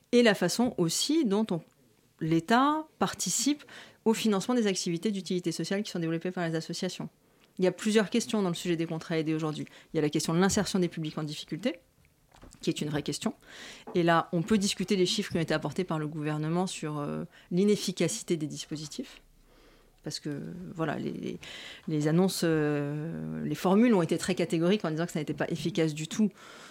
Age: 30-49